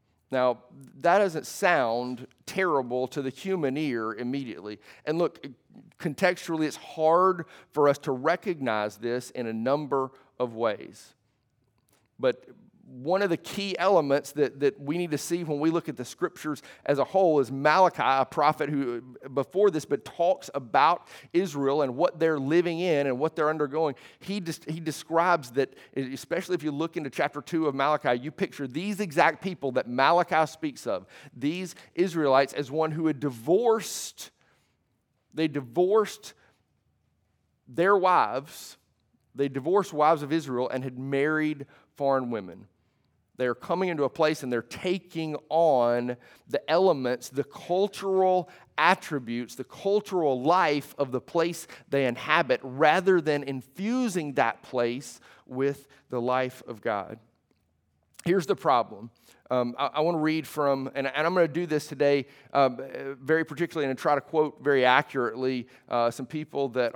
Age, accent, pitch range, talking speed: 40-59, American, 130-165 Hz, 155 wpm